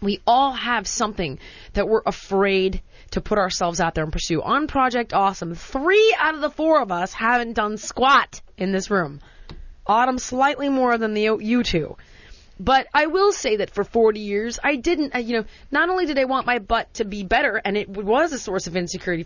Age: 30-49